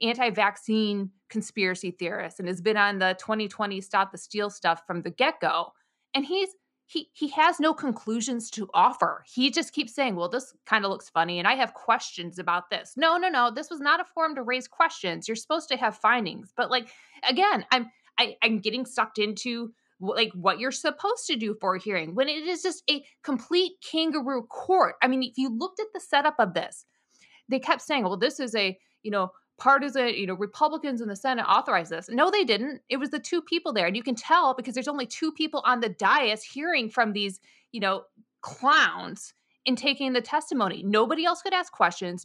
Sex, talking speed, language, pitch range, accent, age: female, 210 wpm, English, 215-300 Hz, American, 20-39